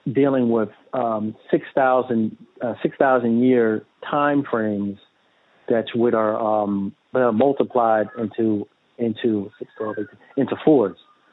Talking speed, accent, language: 95 wpm, American, English